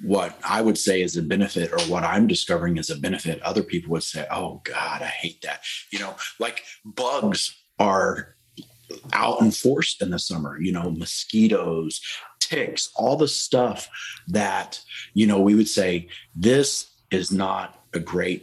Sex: male